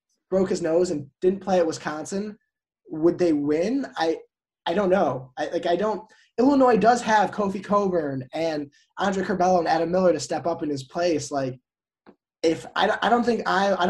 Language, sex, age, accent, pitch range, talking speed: English, male, 20-39, American, 155-195 Hz, 190 wpm